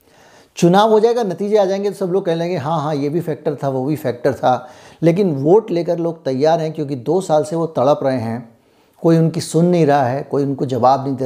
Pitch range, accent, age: 135-165 Hz, native, 50-69